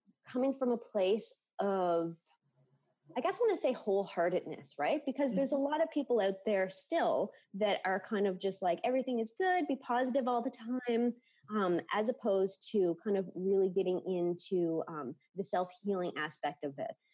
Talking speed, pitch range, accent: 180 wpm, 170-225 Hz, American